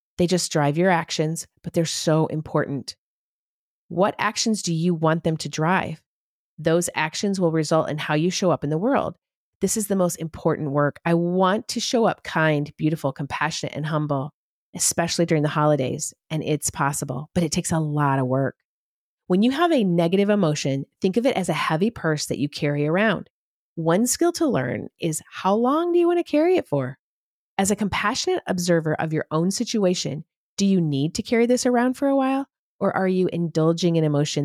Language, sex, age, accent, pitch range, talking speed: English, female, 40-59, American, 145-195 Hz, 200 wpm